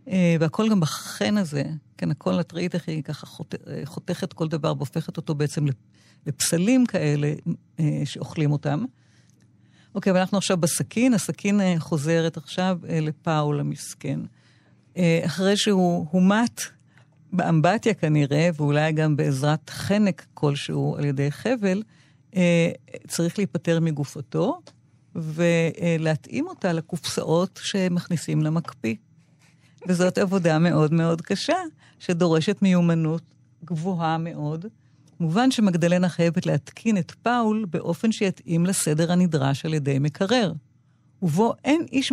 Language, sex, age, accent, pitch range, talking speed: Hebrew, female, 50-69, native, 150-190 Hz, 105 wpm